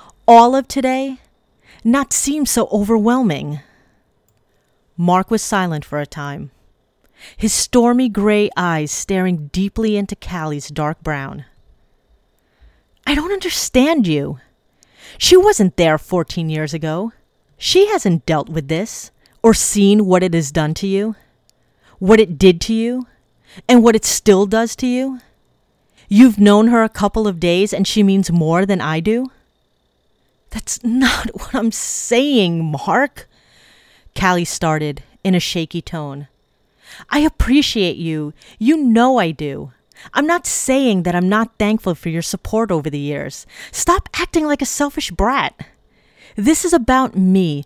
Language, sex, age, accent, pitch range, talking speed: English, female, 30-49, American, 170-245 Hz, 145 wpm